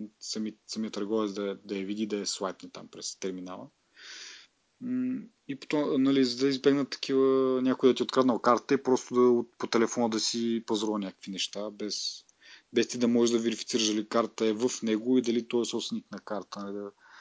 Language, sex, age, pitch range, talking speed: Bulgarian, male, 30-49, 105-135 Hz, 200 wpm